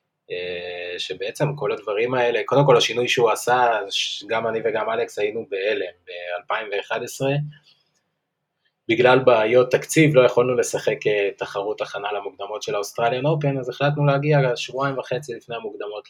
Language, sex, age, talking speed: Hebrew, male, 20-39, 135 wpm